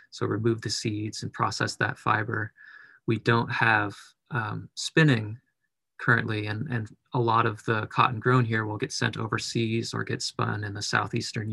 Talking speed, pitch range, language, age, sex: 170 wpm, 110-125 Hz, English, 30-49, male